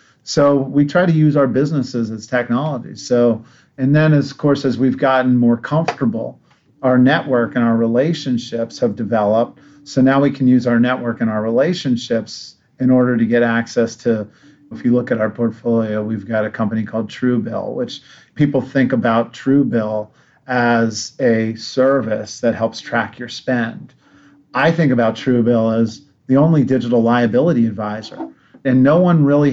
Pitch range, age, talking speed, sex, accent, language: 120-140 Hz, 40-59, 165 wpm, male, American, English